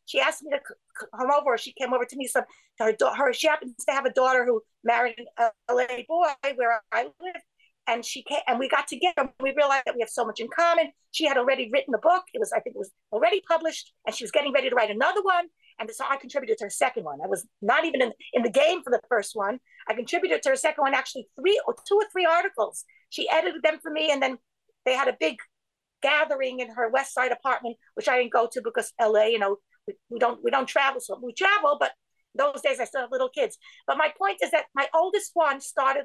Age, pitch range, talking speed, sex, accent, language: 50-69, 240-325 Hz, 250 wpm, female, American, English